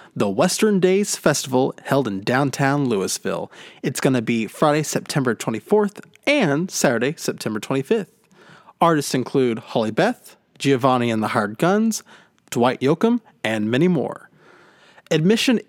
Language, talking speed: English, 130 wpm